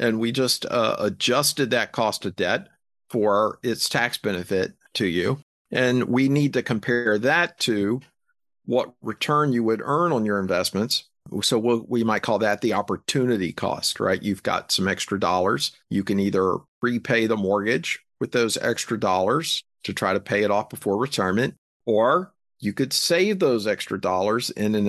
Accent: American